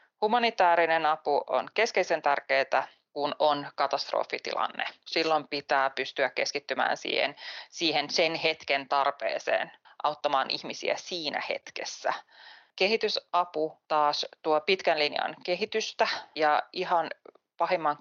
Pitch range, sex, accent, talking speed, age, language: 145-180 Hz, female, native, 100 wpm, 20-39, Finnish